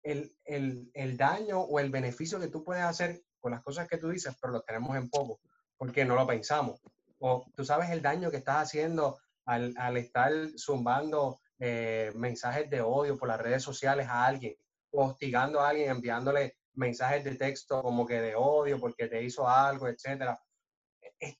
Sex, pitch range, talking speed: male, 120-155 Hz, 180 wpm